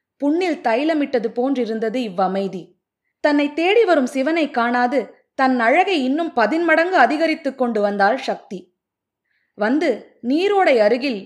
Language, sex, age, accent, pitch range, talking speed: Tamil, female, 20-39, native, 210-290 Hz, 105 wpm